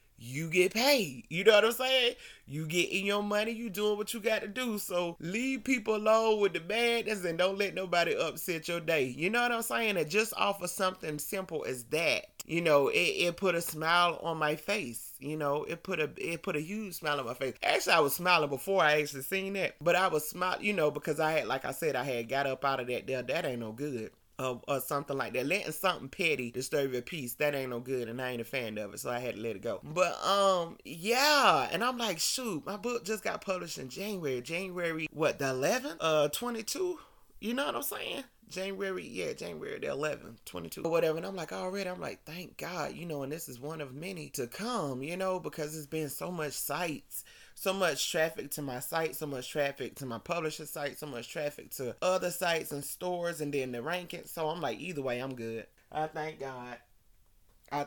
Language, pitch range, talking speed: English, 140-195 Hz, 235 wpm